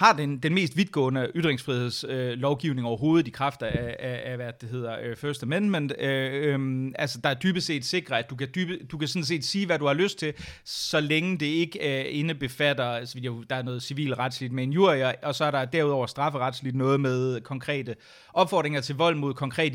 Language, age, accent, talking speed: Danish, 30-49, native, 215 wpm